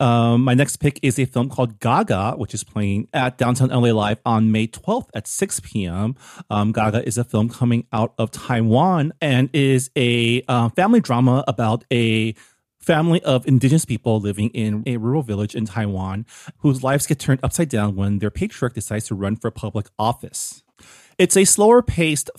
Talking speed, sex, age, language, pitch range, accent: 180 wpm, male, 30-49, English, 110-135 Hz, American